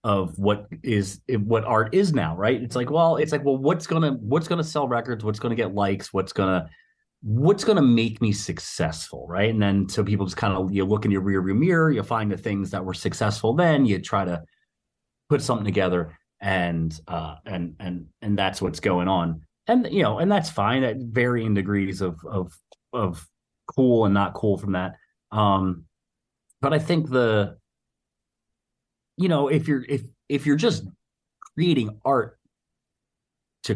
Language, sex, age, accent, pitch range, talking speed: English, male, 30-49, American, 95-130 Hz, 185 wpm